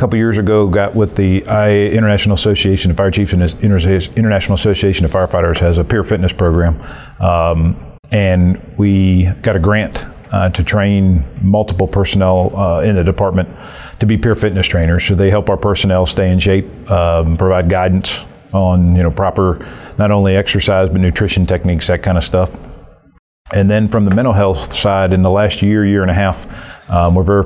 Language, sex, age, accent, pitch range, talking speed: English, male, 40-59, American, 90-100 Hz, 190 wpm